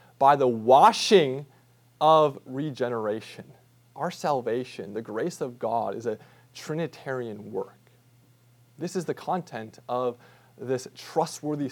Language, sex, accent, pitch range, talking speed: English, male, American, 125-175 Hz, 115 wpm